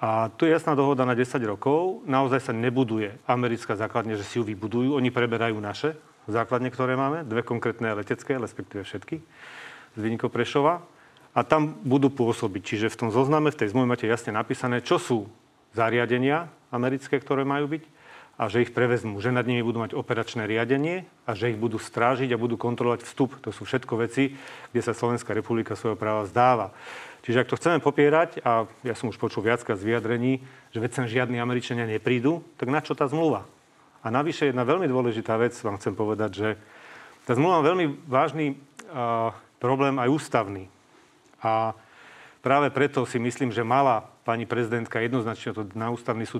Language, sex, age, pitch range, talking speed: Slovak, male, 40-59, 115-135 Hz, 180 wpm